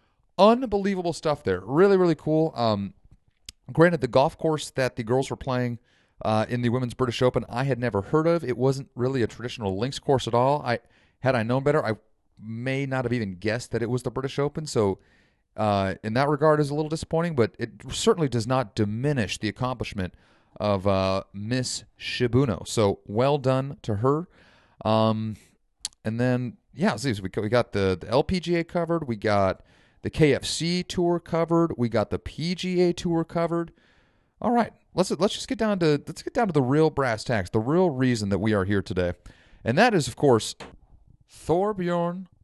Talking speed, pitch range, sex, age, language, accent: 185 wpm, 110-160 Hz, male, 30-49, English, American